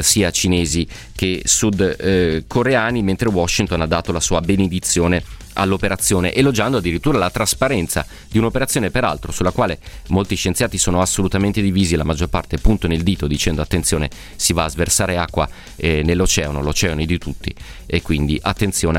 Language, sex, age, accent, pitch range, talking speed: Italian, male, 30-49, native, 85-105 Hz, 155 wpm